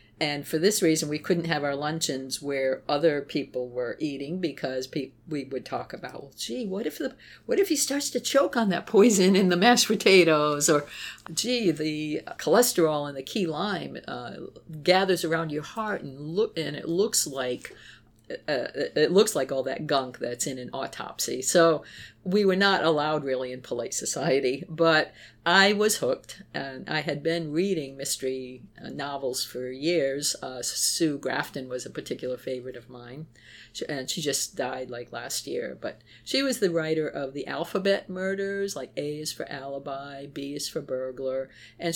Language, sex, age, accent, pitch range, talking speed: English, female, 50-69, American, 130-175 Hz, 175 wpm